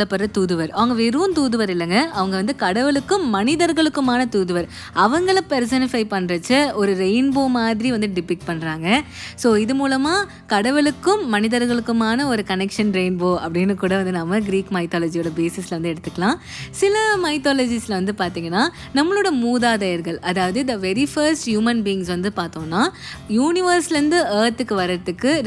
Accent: native